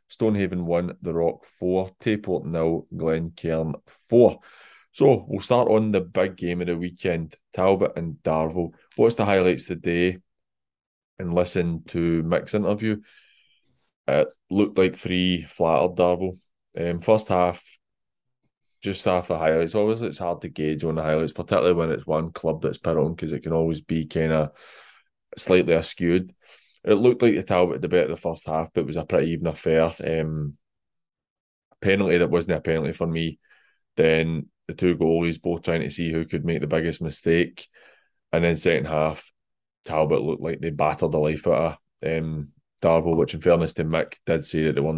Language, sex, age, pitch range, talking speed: English, male, 20-39, 80-90 Hz, 175 wpm